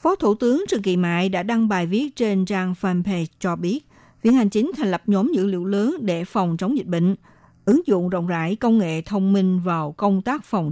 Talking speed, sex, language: 230 wpm, female, Vietnamese